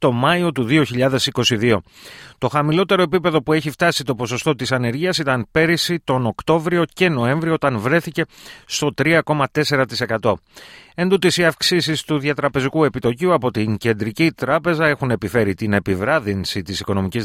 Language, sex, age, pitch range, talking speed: Greek, male, 30-49, 110-155 Hz, 140 wpm